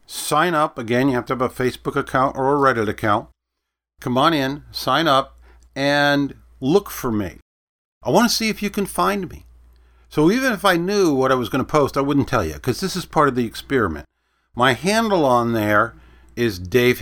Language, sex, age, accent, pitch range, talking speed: English, male, 50-69, American, 90-140 Hz, 210 wpm